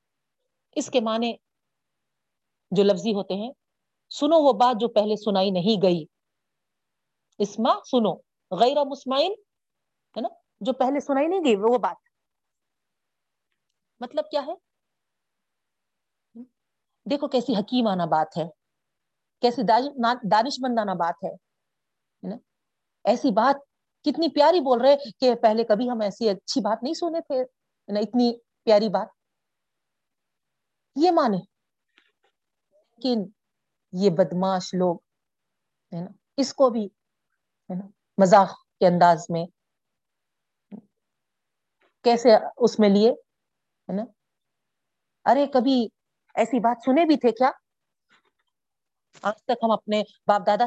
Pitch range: 205-265 Hz